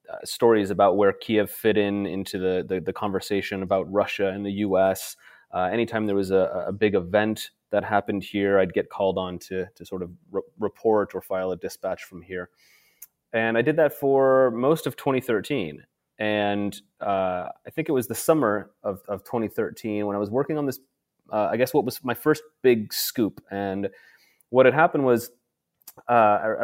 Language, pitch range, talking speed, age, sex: English, 95-115 Hz, 185 wpm, 30-49, male